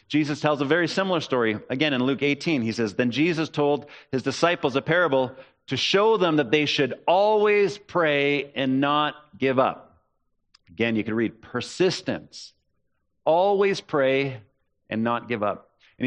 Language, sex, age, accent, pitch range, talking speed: English, male, 40-59, American, 130-165 Hz, 160 wpm